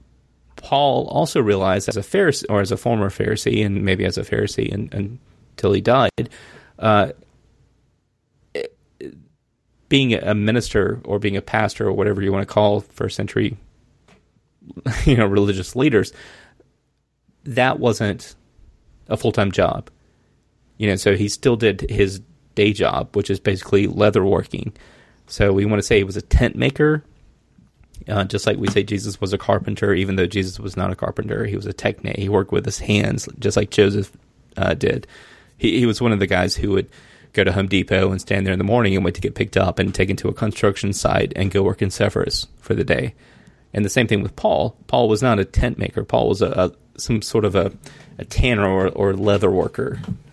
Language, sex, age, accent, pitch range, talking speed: English, male, 30-49, American, 100-115 Hz, 195 wpm